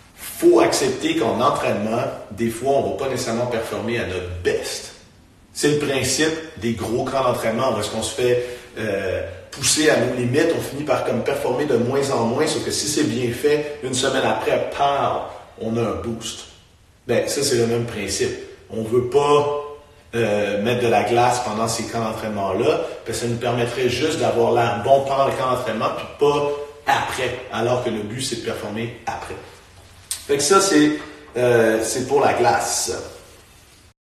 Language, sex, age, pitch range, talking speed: French, male, 40-59, 115-135 Hz, 190 wpm